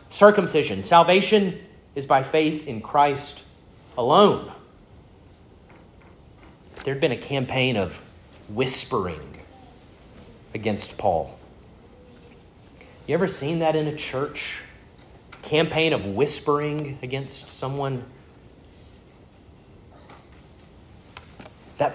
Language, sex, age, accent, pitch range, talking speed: English, male, 40-59, American, 115-170 Hz, 80 wpm